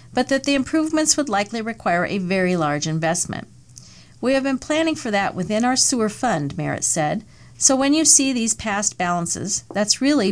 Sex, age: female, 50-69